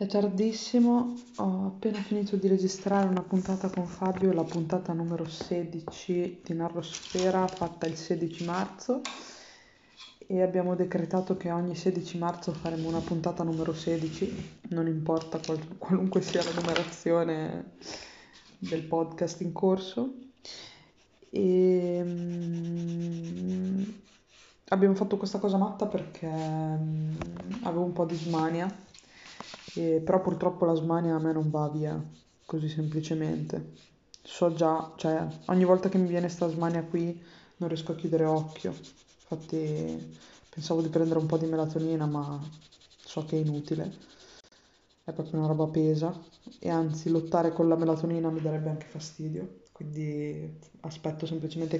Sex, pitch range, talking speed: female, 160-185 Hz, 135 wpm